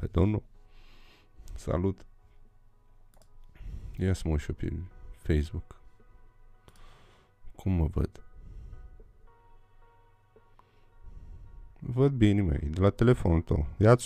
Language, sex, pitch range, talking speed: Romanian, male, 85-110 Hz, 70 wpm